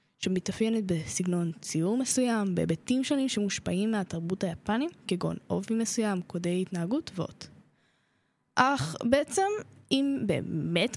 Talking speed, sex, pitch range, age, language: 105 wpm, female, 190-280 Hz, 10-29, Hebrew